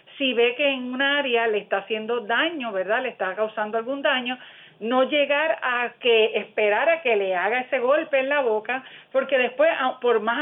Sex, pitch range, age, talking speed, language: female, 220-280 Hz, 40-59, 195 wpm, Spanish